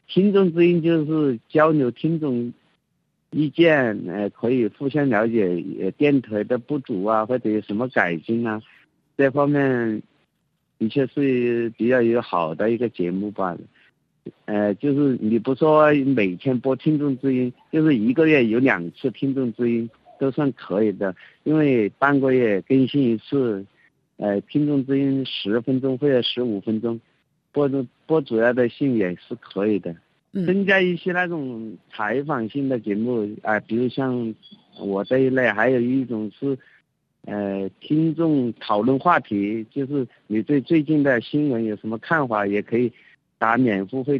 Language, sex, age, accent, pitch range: Chinese, male, 50-69, native, 110-145 Hz